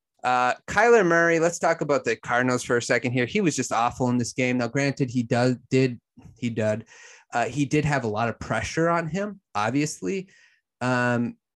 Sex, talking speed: male, 195 wpm